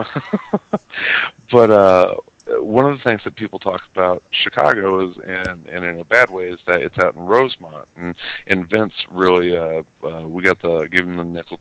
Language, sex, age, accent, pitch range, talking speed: English, male, 50-69, American, 80-90 Hz, 190 wpm